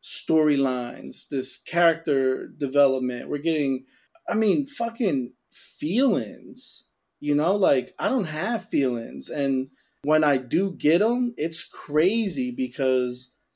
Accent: American